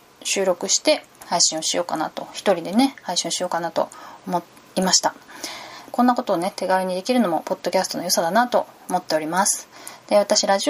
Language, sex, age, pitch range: Japanese, female, 20-39, 185-265 Hz